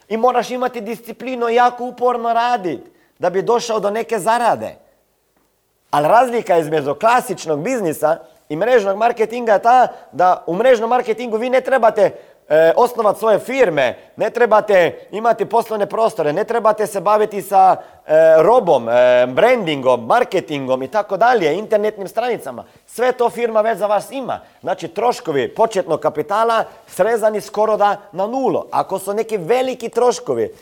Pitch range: 180-240 Hz